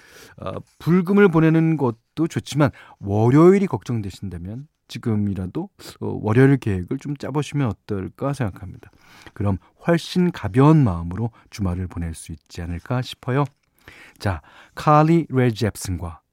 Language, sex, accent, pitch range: Korean, male, native, 100-150 Hz